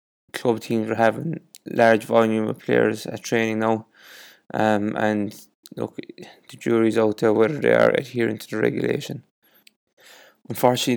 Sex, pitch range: male, 110-115 Hz